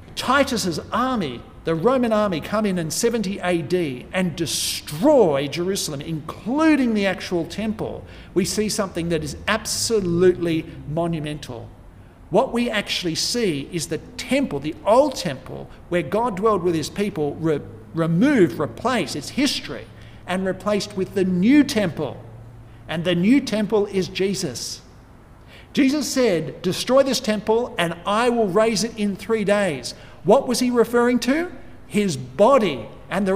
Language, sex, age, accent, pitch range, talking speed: English, male, 50-69, Australian, 165-225 Hz, 140 wpm